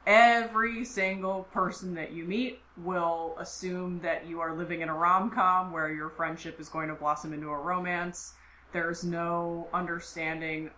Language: English